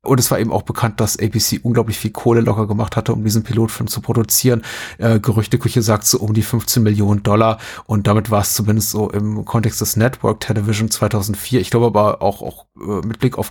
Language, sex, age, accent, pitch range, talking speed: German, male, 30-49, German, 105-120 Hz, 215 wpm